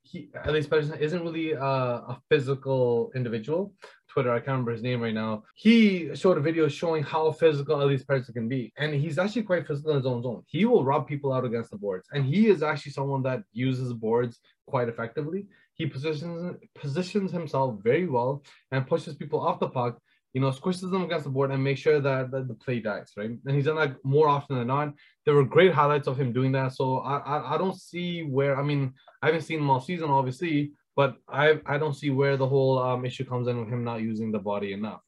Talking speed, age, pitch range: 230 wpm, 20-39, 130-155 Hz